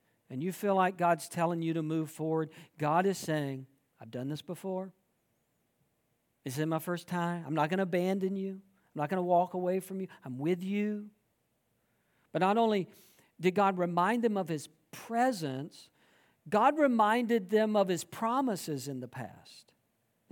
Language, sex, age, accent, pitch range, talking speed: English, male, 50-69, American, 165-220 Hz, 175 wpm